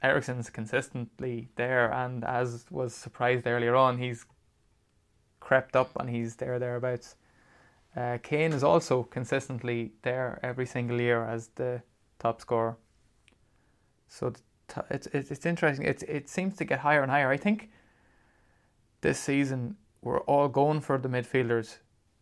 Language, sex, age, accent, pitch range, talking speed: English, male, 20-39, Irish, 120-135 Hz, 145 wpm